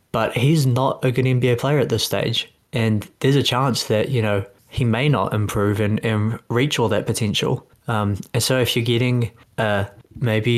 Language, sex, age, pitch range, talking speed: English, male, 20-39, 105-120 Hz, 200 wpm